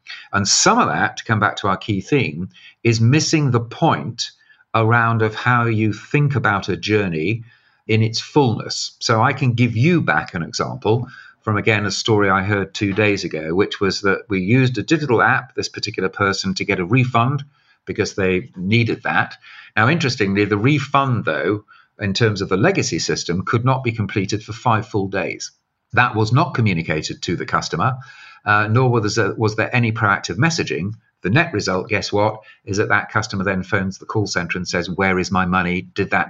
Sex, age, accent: male, 50-69, British